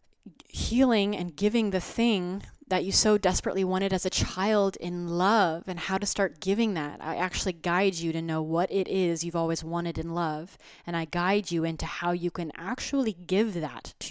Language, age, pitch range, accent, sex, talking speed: English, 20-39, 170-200 Hz, American, female, 200 wpm